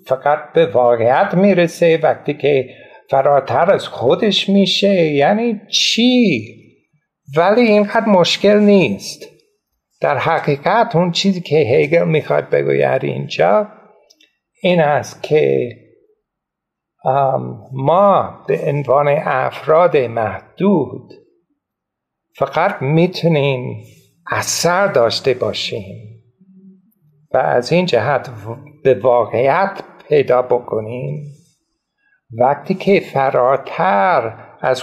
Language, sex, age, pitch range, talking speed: Persian, male, 50-69, 125-190 Hz, 90 wpm